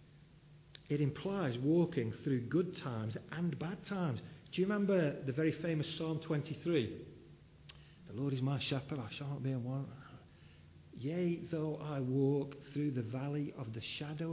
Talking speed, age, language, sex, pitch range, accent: 160 wpm, 50-69, English, male, 130-155 Hz, British